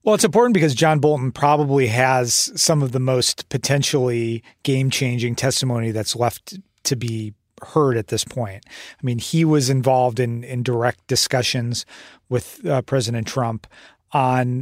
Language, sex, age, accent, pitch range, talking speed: English, male, 40-59, American, 120-140 Hz, 150 wpm